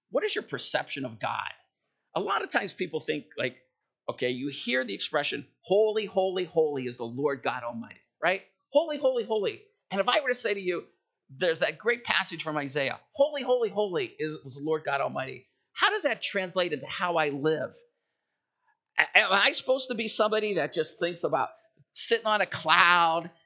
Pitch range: 150-245 Hz